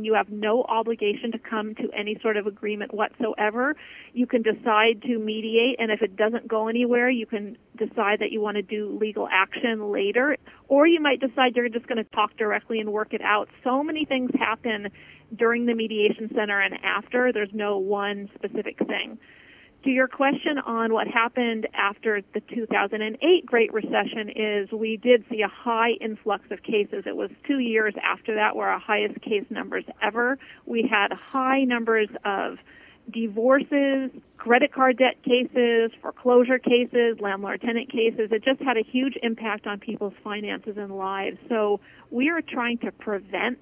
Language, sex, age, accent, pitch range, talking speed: English, female, 40-59, American, 215-255 Hz, 175 wpm